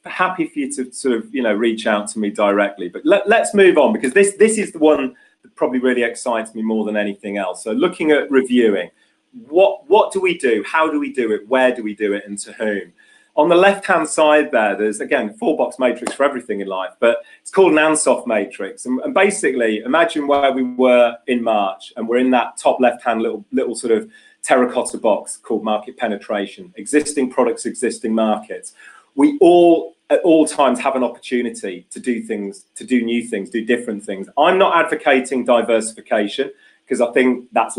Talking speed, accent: 205 wpm, British